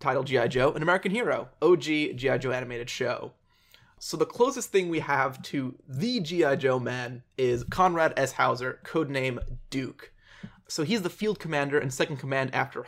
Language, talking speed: English, 170 wpm